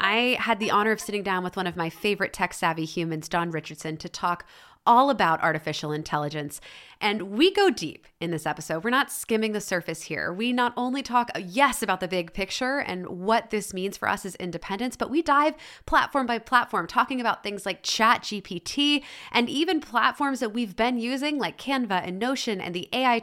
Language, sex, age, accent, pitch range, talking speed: English, female, 20-39, American, 175-250 Hz, 200 wpm